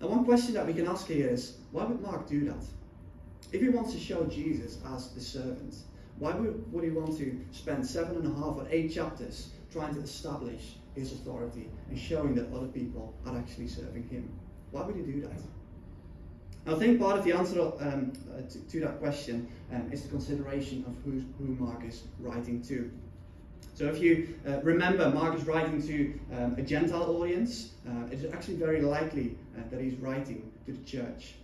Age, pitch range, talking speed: 20-39, 120-150 Hz, 200 wpm